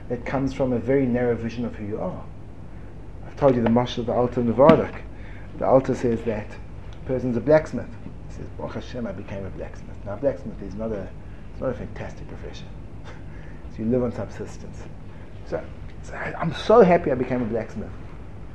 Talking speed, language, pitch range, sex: 200 wpm, English, 95-155 Hz, male